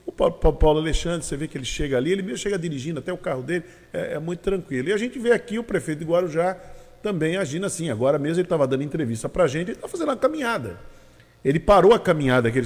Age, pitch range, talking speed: 40-59, 135-195 Hz, 250 wpm